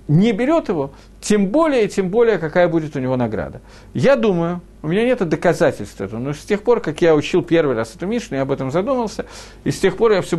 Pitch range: 145-215 Hz